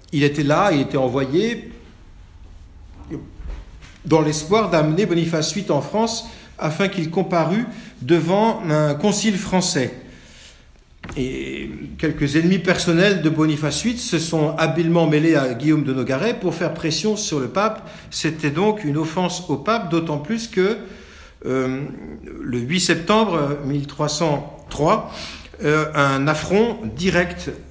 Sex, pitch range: male, 130-180 Hz